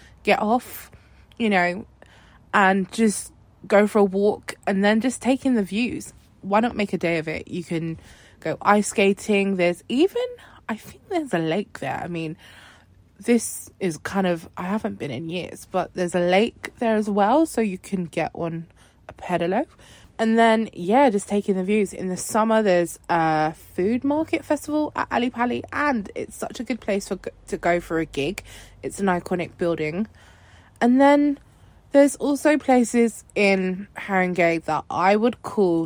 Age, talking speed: 20-39, 175 wpm